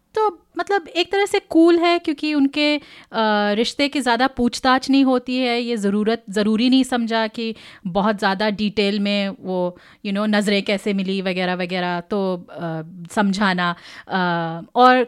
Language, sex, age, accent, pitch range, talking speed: Hindi, female, 30-49, native, 190-260 Hz, 160 wpm